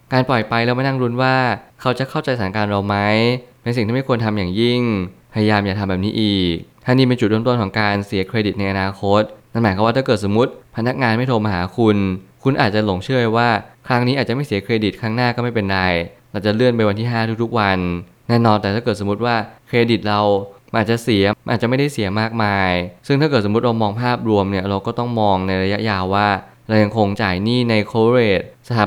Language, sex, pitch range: Thai, male, 100-120 Hz